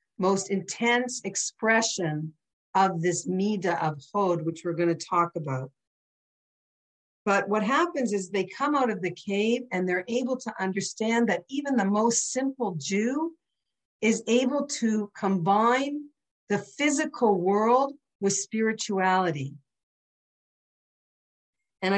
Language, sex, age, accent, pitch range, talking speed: English, female, 50-69, American, 175-230 Hz, 125 wpm